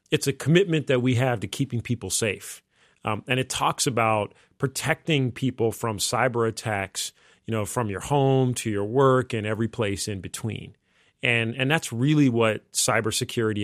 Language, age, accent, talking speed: English, 40-59, American, 170 wpm